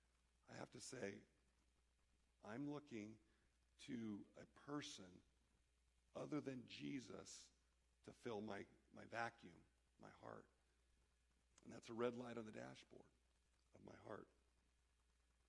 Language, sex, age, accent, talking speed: English, male, 50-69, American, 115 wpm